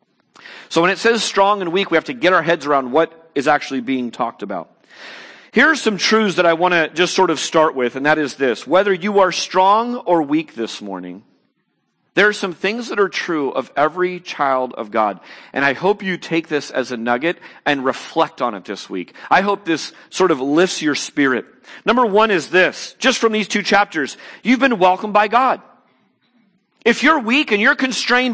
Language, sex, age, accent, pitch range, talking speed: English, male, 40-59, American, 165-235 Hz, 210 wpm